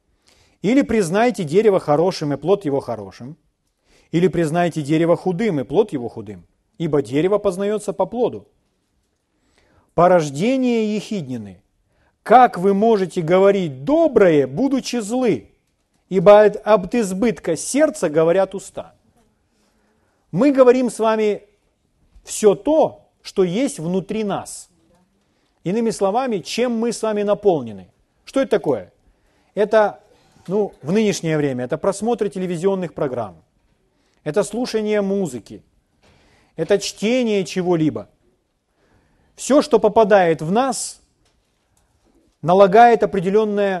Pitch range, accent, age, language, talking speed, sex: 165-230 Hz, native, 40-59, Ukrainian, 105 wpm, male